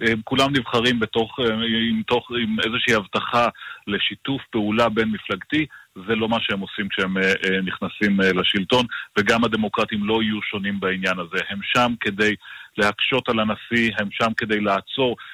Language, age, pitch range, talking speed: Hebrew, 30-49, 100-115 Hz, 145 wpm